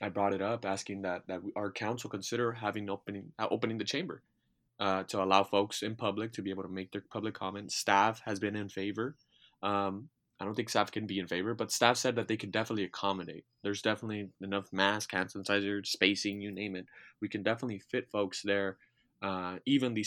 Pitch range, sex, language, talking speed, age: 95-115 Hz, male, English, 205 wpm, 20-39